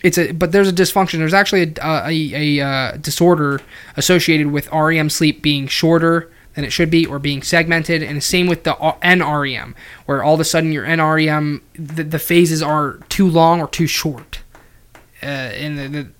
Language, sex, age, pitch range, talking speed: English, male, 20-39, 140-170 Hz, 195 wpm